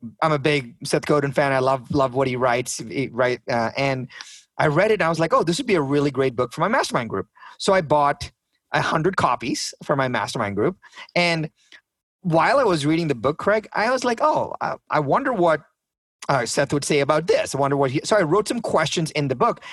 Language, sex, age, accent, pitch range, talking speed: English, male, 30-49, American, 150-210 Hz, 240 wpm